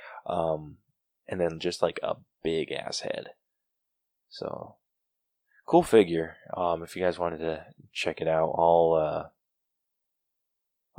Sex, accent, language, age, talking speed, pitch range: male, American, English, 20-39, 125 wpm, 85-110 Hz